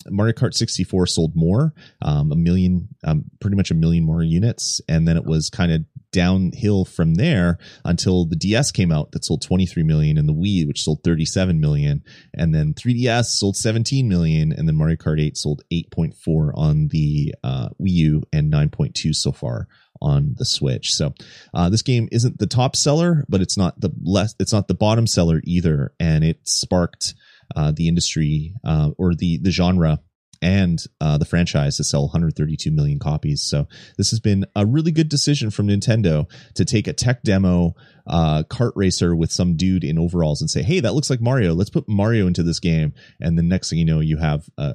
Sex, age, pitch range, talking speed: male, 30-49, 80-115 Hz, 200 wpm